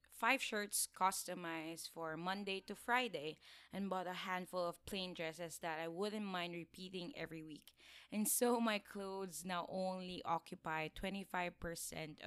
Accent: Filipino